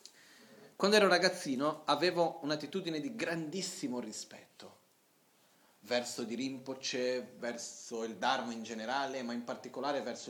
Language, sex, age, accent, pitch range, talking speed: Italian, male, 30-49, native, 130-160 Hz, 115 wpm